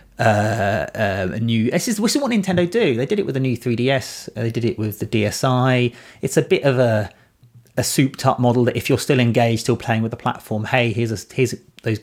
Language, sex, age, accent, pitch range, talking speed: English, male, 30-49, British, 110-135 Hz, 225 wpm